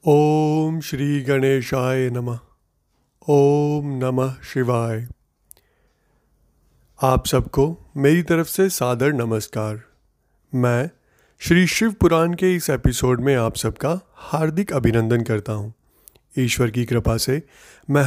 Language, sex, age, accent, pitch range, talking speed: Hindi, male, 30-49, native, 120-155 Hz, 105 wpm